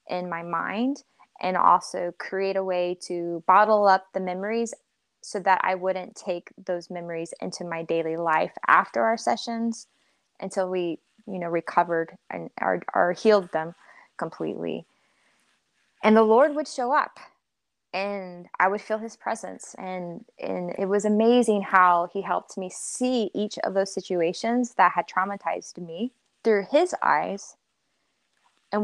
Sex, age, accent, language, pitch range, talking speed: female, 20-39, American, English, 175-215 Hz, 150 wpm